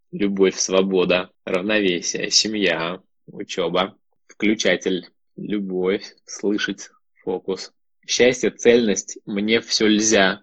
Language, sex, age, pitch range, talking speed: Russian, male, 20-39, 100-120 Hz, 80 wpm